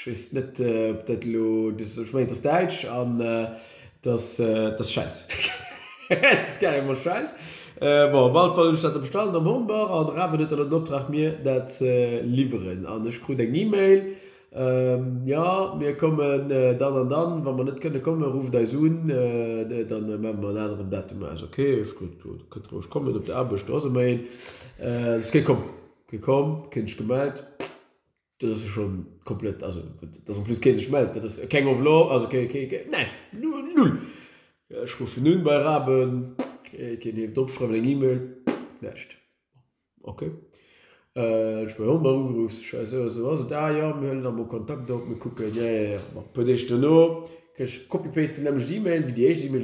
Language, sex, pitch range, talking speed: English, male, 115-145 Hz, 130 wpm